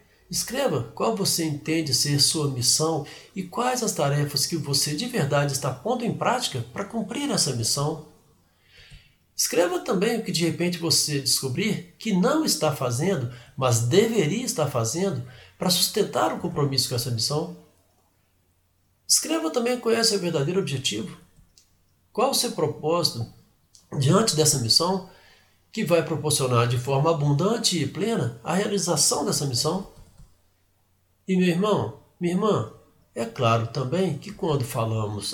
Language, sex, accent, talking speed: Portuguese, male, Brazilian, 145 wpm